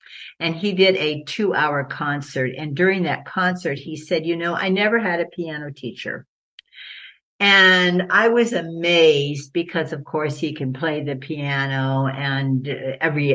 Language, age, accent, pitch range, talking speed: English, 60-79, American, 140-185 Hz, 155 wpm